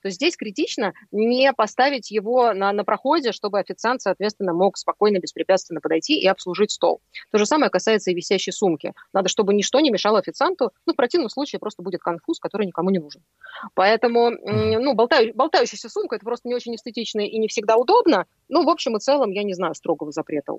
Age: 30-49